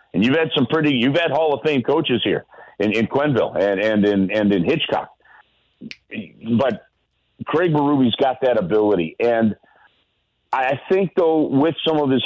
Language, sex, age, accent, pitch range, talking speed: English, male, 50-69, American, 110-155 Hz, 170 wpm